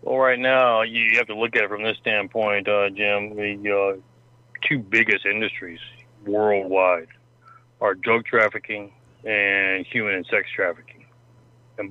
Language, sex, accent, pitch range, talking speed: English, male, American, 100-120 Hz, 145 wpm